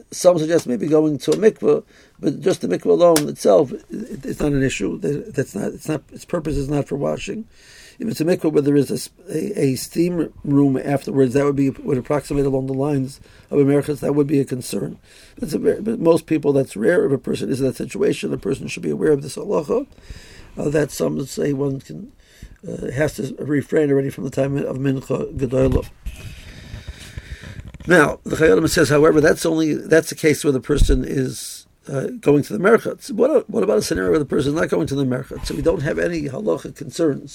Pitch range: 135-155 Hz